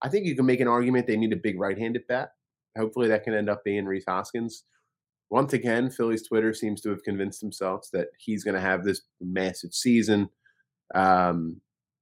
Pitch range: 95-120 Hz